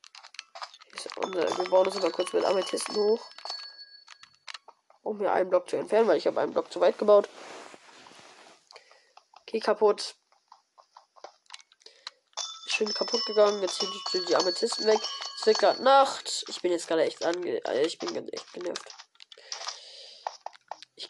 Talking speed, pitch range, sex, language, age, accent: 140 wpm, 210-330 Hz, female, German, 20-39, German